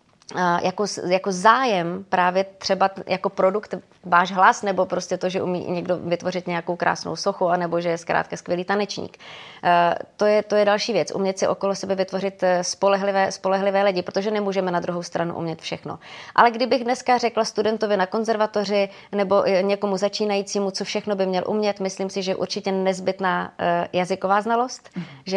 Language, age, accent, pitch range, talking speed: Czech, 30-49, native, 185-205 Hz, 160 wpm